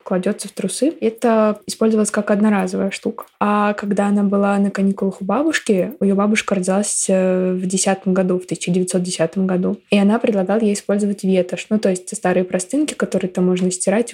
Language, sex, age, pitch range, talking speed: Russian, female, 20-39, 185-210 Hz, 165 wpm